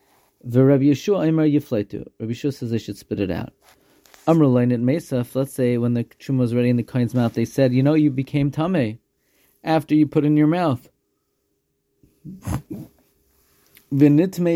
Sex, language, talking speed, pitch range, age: male, English, 145 wpm, 120-150 Hz, 40-59